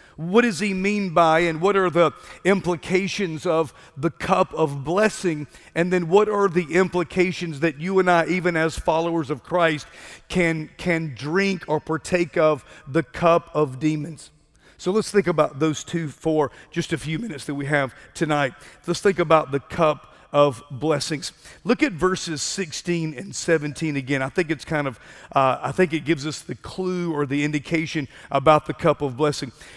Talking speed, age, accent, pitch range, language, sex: 185 wpm, 40-59, American, 155-185 Hz, English, male